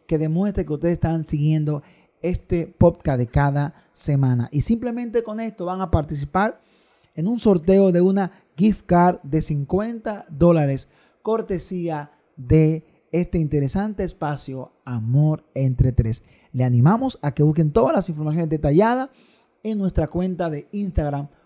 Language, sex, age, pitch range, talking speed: Spanish, male, 30-49, 150-195 Hz, 140 wpm